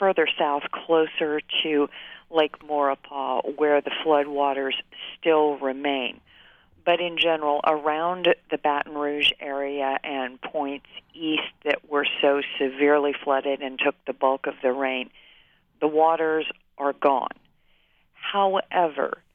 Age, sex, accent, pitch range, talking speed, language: 50-69, female, American, 145-165 Hz, 120 wpm, English